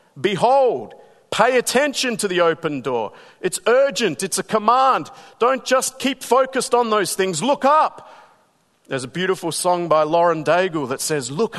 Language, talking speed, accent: English, 160 wpm, Australian